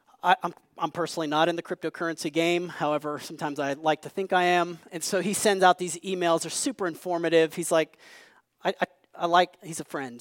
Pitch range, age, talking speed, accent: 155-185 Hz, 30-49, 205 wpm, American